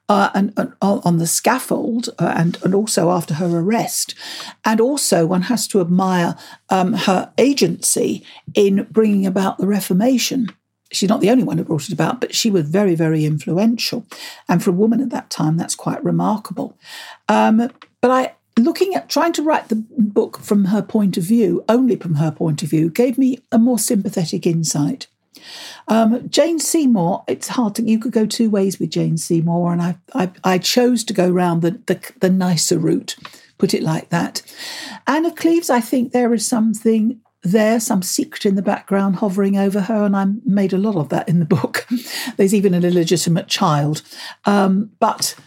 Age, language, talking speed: 60-79, English, 190 wpm